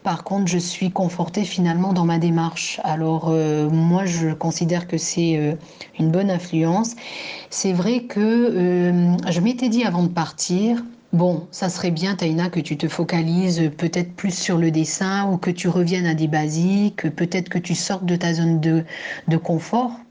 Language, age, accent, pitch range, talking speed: French, 40-59, French, 160-190 Hz, 185 wpm